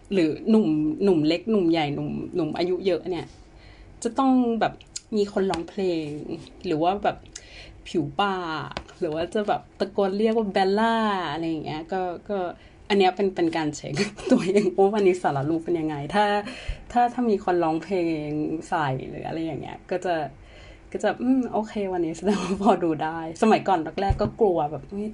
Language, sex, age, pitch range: Thai, female, 30-49, 160-200 Hz